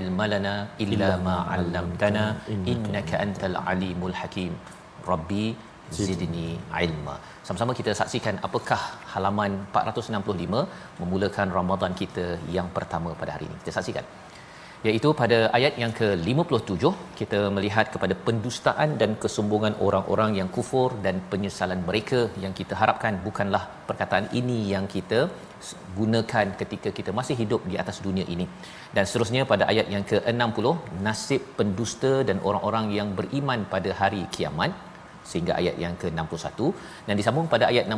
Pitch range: 95-110 Hz